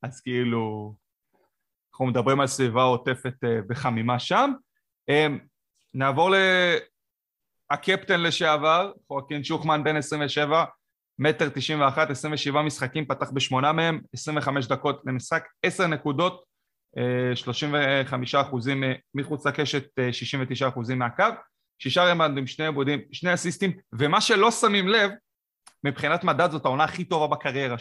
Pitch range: 130-180 Hz